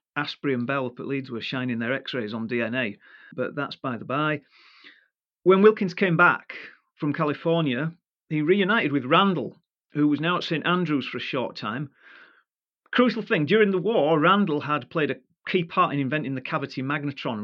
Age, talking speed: 40-59, 180 wpm